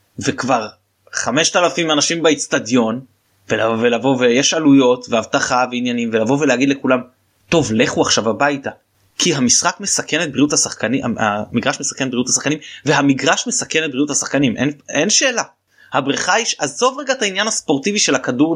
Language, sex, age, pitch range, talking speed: Hebrew, male, 20-39, 120-155 Hz, 150 wpm